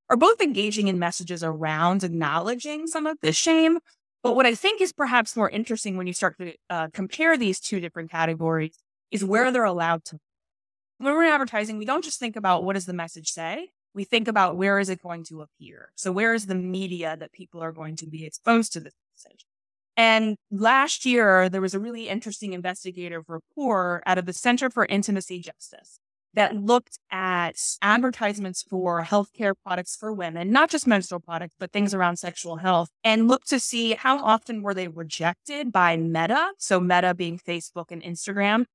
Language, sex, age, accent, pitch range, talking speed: English, female, 20-39, American, 175-225 Hz, 190 wpm